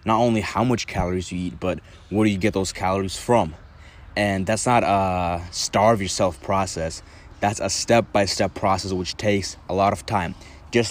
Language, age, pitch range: English, 20-39, 90-110 Hz